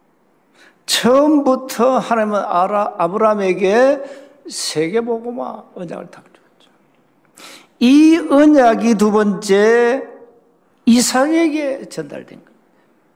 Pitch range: 210-285 Hz